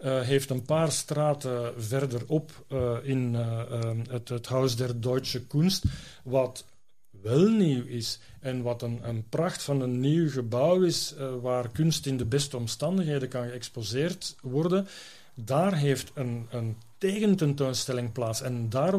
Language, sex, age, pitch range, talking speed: Dutch, male, 40-59, 125-145 Hz, 150 wpm